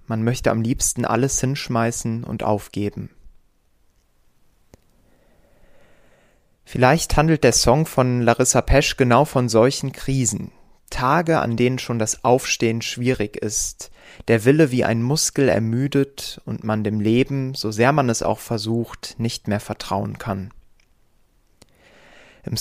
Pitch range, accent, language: 110-130 Hz, German, German